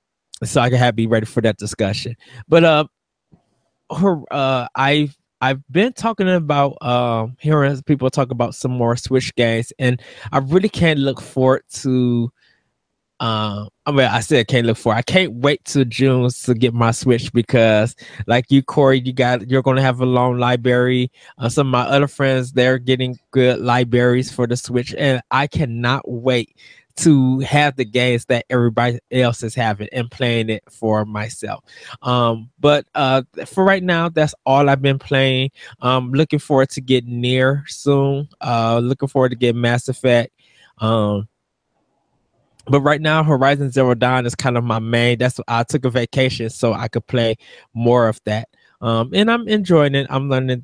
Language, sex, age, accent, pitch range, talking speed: English, male, 20-39, American, 120-140 Hz, 180 wpm